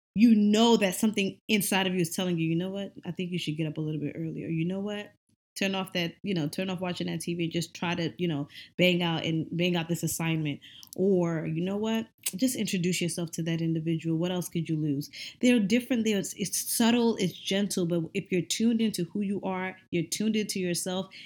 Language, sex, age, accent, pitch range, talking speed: English, female, 20-39, American, 175-205 Hz, 235 wpm